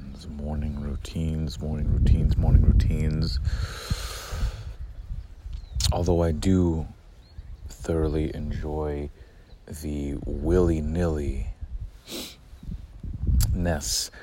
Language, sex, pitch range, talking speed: English, male, 75-85 Hz, 55 wpm